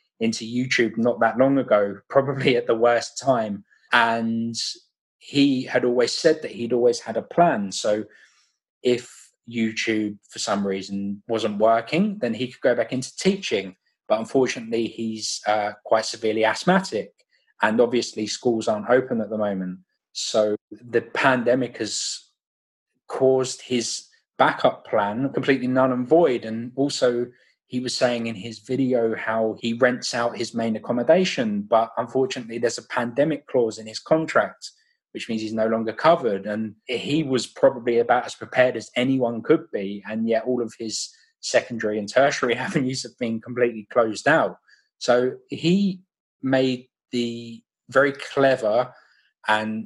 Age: 20-39